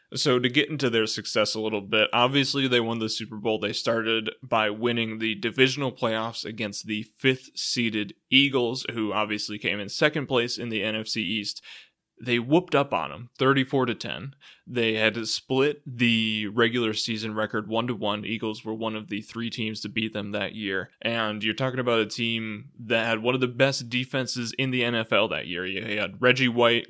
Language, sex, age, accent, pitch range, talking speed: English, male, 20-39, American, 110-125 Hz, 190 wpm